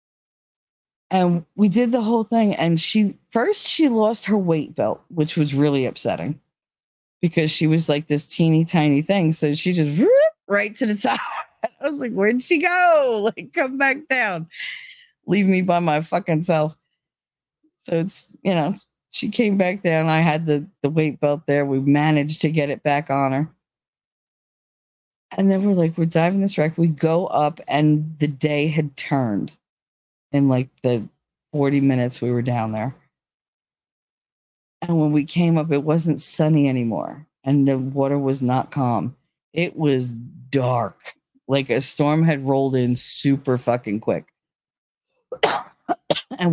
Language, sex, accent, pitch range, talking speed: English, female, American, 140-190 Hz, 160 wpm